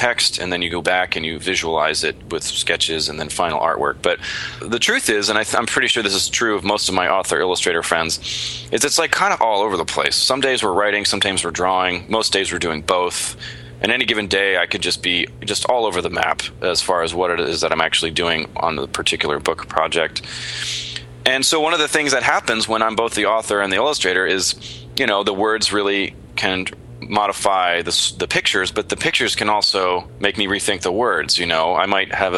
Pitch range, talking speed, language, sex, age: 80-110 Hz, 235 wpm, English, male, 20-39